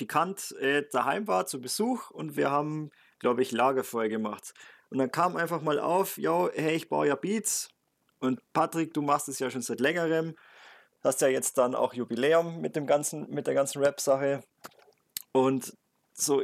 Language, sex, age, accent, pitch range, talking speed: German, male, 20-39, German, 135-165 Hz, 180 wpm